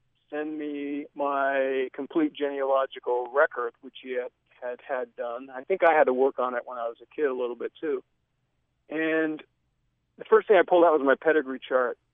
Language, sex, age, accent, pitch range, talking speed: English, male, 40-59, American, 125-150 Hz, 200 wpm